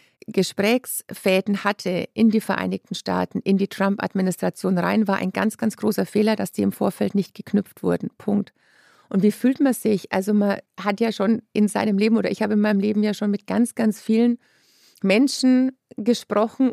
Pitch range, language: 195-225 Hz, German